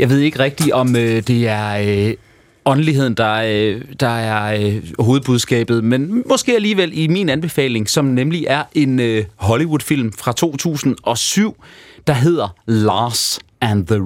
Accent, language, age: native, Danish, 30-49